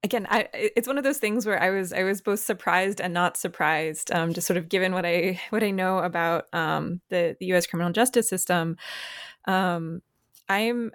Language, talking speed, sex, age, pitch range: English, 205 wpm, female, 20-39, 175-205 Hz